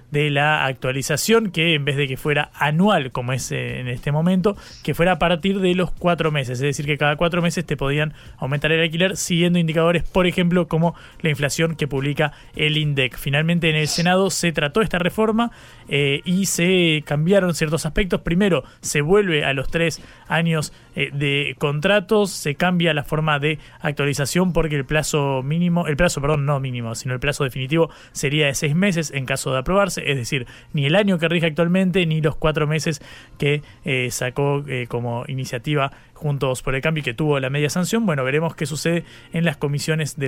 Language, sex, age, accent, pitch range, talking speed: Spanish, male, 20-39, Argentinian, 135-170 Hz, 195 wpm